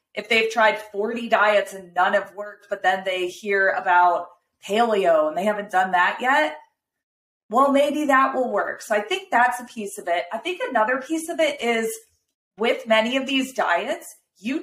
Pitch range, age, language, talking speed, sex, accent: 200-255 Hz, 30-49, English, 195 wpm, female, American